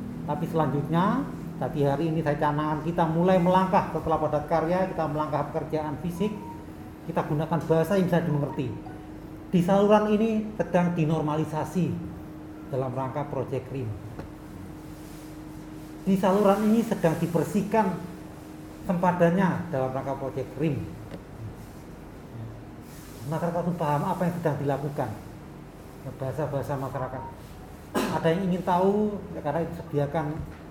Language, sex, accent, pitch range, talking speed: Indonesian, male, native, 140-180 Hz, 115 wpm